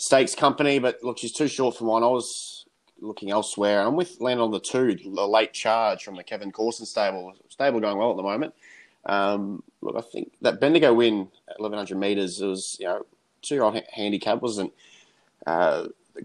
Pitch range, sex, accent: 100-115 Hz, male, Australian